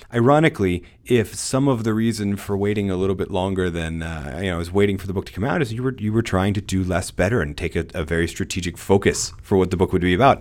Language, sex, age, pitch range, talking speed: English, male, 30-49, 90-115 Hz, 285 wpm